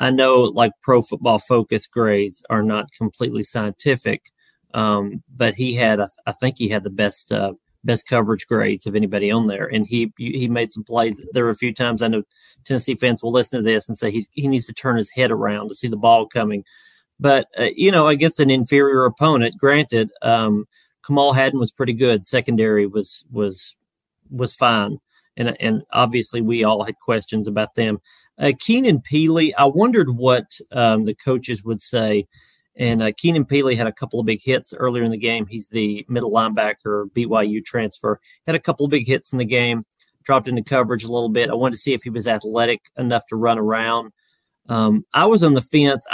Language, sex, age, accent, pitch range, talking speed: English, male, 40-59, American, 110-130 Hz, 205 wpm